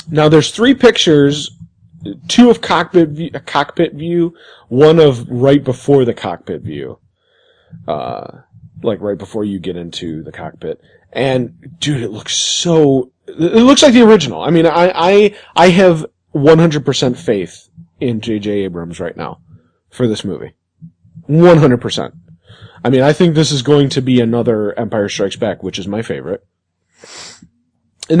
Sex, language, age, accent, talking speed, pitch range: male, English, 30-49, American, 155 wpm, 115-170 Hz